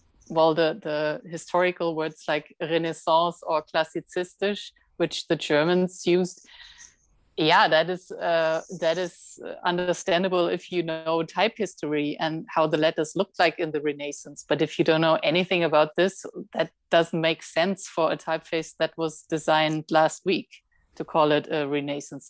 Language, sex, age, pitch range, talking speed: Swedish, female, 30-49, 155-180 Hz, 160 wpm